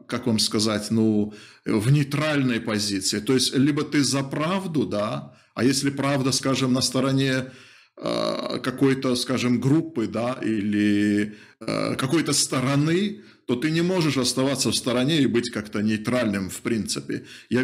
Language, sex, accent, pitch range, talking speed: Russian, male, native, 115-140 Hz, 145 wpm